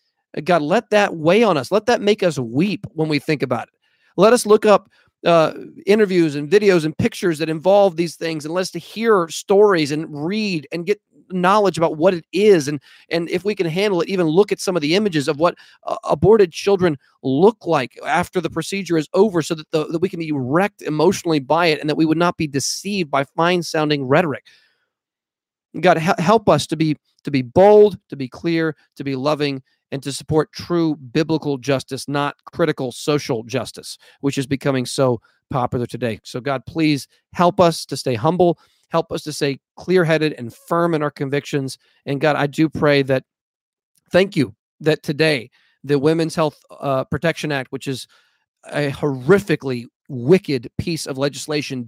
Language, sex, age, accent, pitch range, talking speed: English, male, 40-59, American, 140-180 Hz, 190 wpm